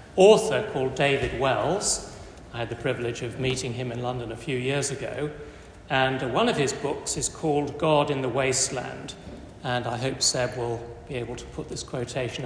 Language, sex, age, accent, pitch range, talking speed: English, male, 40-59, British, 120-165 Hz, 190 wpm